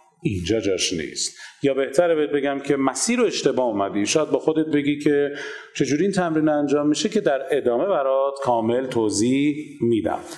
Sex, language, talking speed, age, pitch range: male, Persian, 170 wpm, 40-59, 130-170 Hz